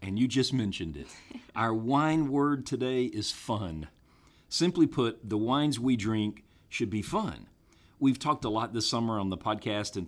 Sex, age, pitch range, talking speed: male, 40-59, 95-130 Hz, 180 wpm